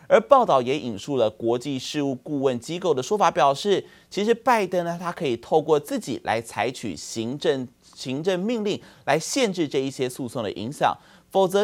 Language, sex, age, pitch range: Chinese, male, 30-49, 120-180 Hz